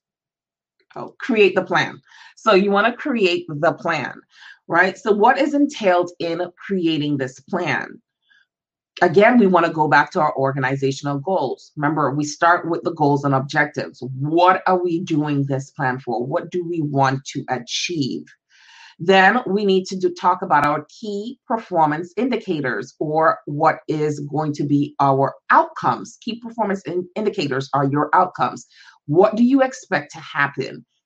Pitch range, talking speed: 145-190 Hz, 160 wpm